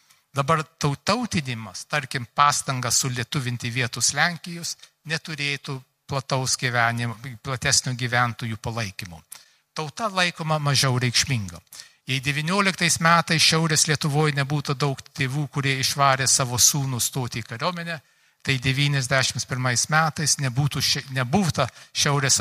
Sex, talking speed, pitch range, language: male, 100 wpm, 130-155 Hz, English